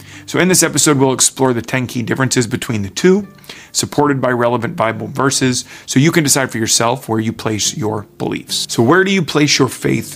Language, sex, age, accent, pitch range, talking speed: English, male, 30-49, American, 115-135 Hz, 215 wpm